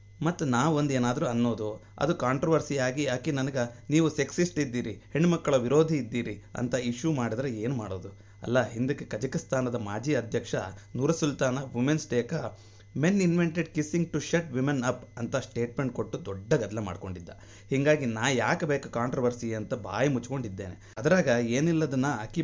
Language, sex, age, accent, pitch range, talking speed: Kannada, male, 30-49, native, 115-150 Hz, 145 wpm